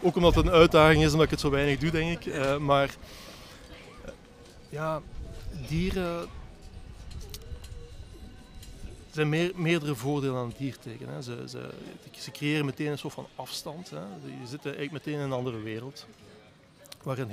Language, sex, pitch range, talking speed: Dutch, male, 125-150 Hz, 155 wpm